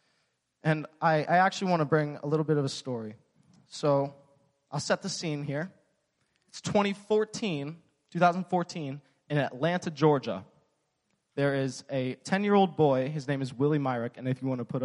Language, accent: English, American